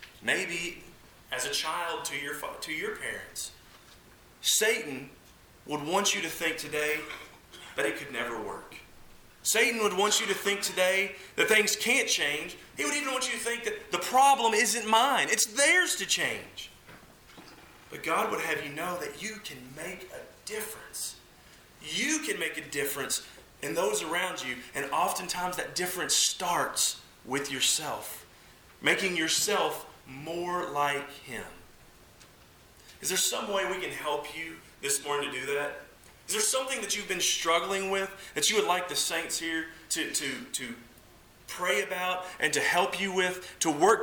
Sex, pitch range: male, 160-215 Hz